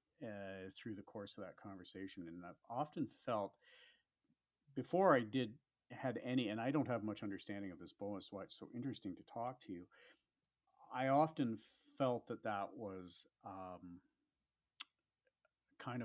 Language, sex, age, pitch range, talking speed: English, male, 40-59, 105-140 Hz, 155 wpm